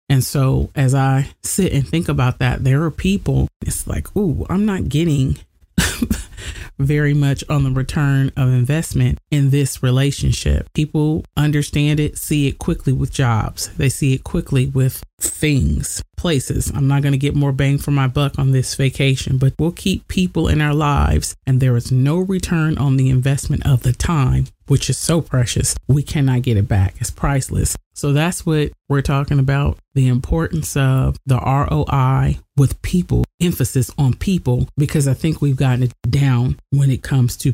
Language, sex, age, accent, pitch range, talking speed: English, male, 30-49, American, 125-145 Hz, 180 wpm